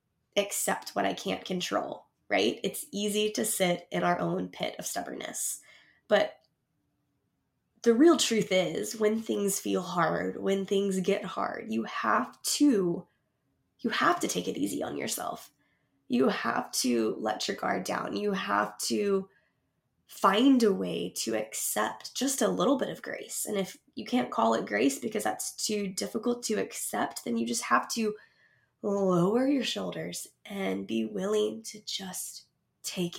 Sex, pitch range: female, 180-220 Hz